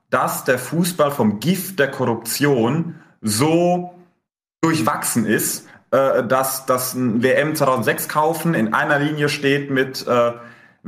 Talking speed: 120 wpm